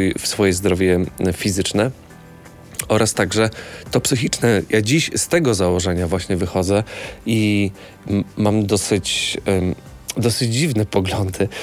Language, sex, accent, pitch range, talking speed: Polish, male, native, 95-120 Hz, 110 wpm